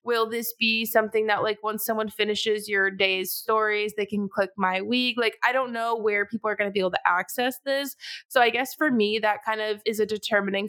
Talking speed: 235 wpm